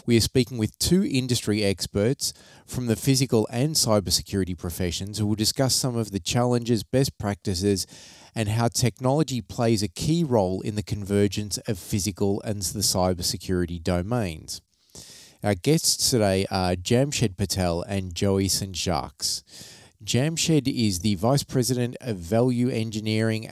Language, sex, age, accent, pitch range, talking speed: English, male, 30-49, Australian, 100-125 Hz, 145 wpm